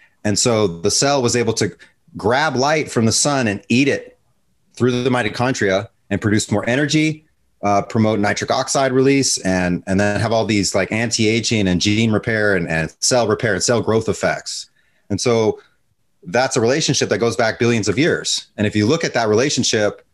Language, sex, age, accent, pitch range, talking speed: English, male, 30-49, American, 105-140 Hz, 190 wpm